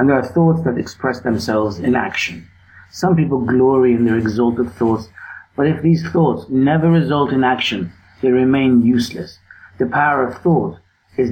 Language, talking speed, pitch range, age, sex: English, 170 wpm, 115-160 Hz, 60-79, male